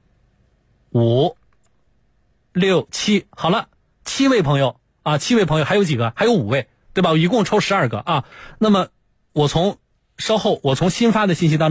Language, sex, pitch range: Chinese, male, 115-160 Hz